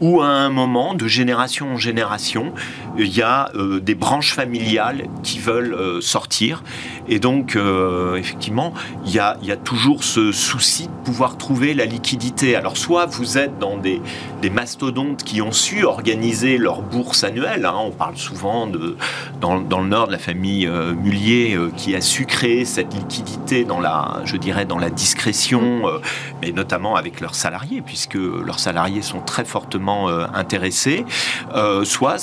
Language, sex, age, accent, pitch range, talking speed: French, male, 40-59, French, 95-125 Hz, 175 wpm